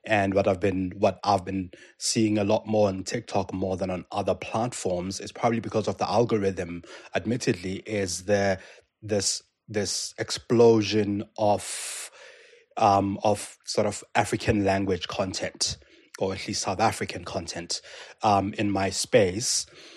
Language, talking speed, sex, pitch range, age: English, 145 wpm, male, 100-110 Hz, 20-39